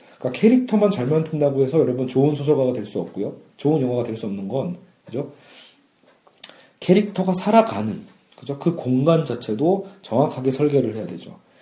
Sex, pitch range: male, 130-185 Hz